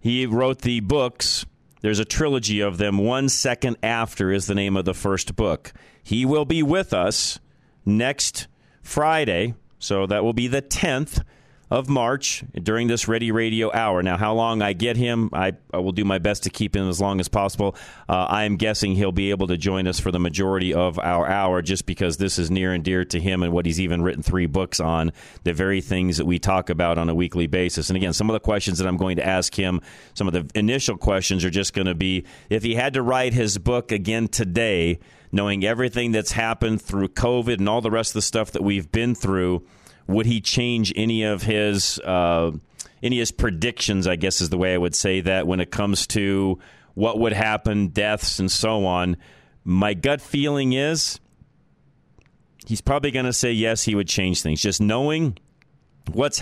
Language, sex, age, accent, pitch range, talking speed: English, male, 40-59, American, 95-120 Hz, 210 wpm